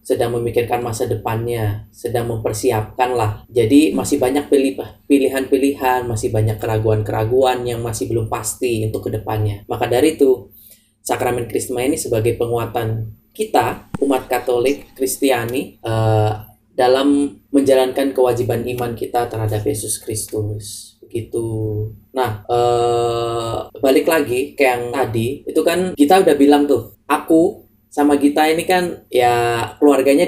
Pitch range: 110-135 Hz